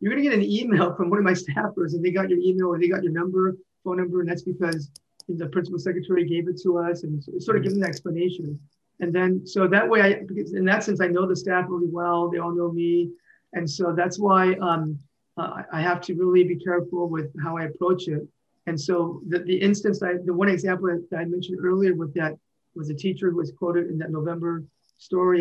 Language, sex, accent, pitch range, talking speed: English, male, American, 165-190 Hz, 235 wpm